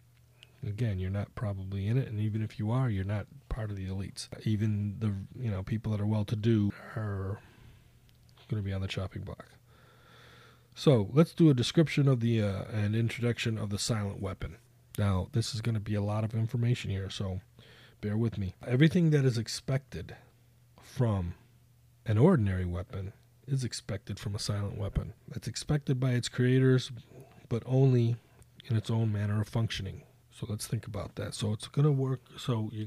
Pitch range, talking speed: 105-125 Hz, 185 wpm